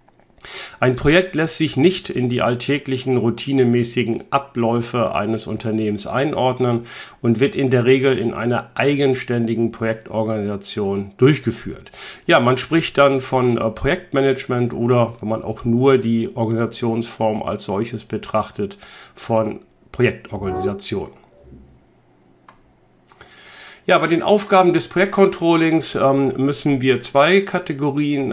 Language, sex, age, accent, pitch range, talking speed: German, male, 50-69, German, 115-140 Hz, 105 wpm